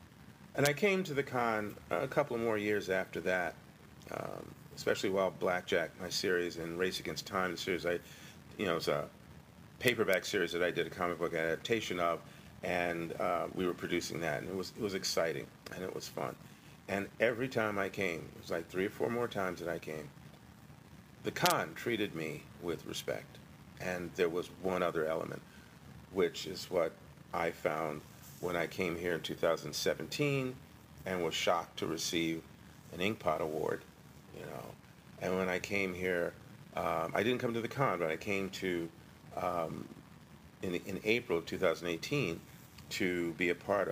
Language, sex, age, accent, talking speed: English, male, 50-69, American, 180 wpm